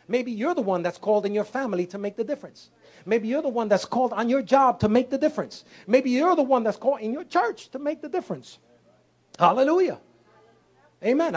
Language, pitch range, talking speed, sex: English, 185-265 Hz, 215 wpm, male